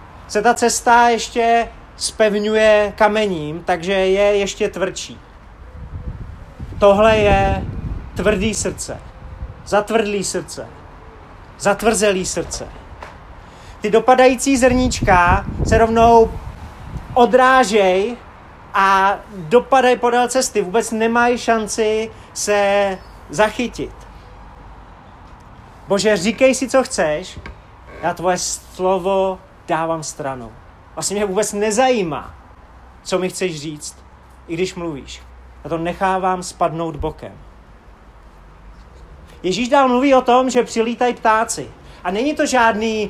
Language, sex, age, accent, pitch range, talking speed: Czech, male, 30-49, native, 155-225 Hz, 100 wpm